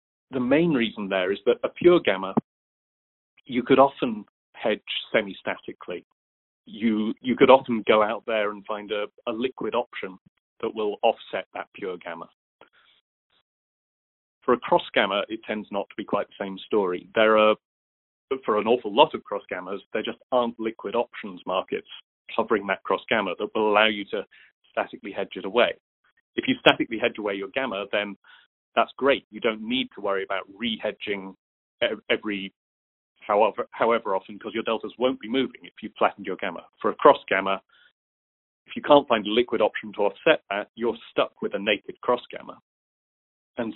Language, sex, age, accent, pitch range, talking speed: English, male, 30-49, British, 100-120 Hz, 175 wpm